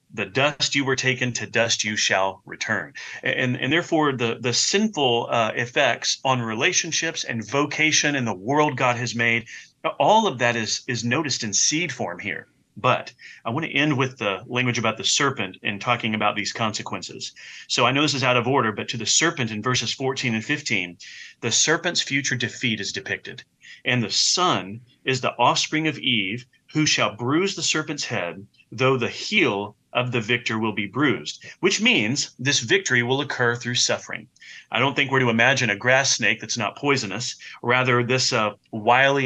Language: English